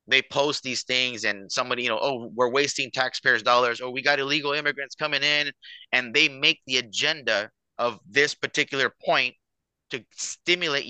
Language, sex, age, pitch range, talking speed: English, male, 30-49, 120-145 Hz, 175 wpm